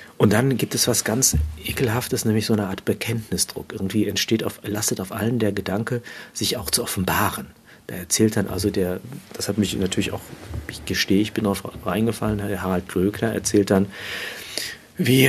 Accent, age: German, 50-69